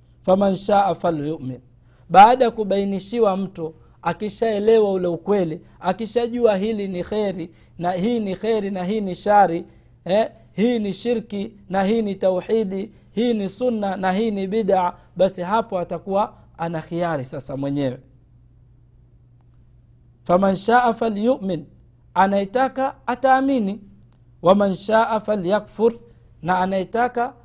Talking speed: 115 wpm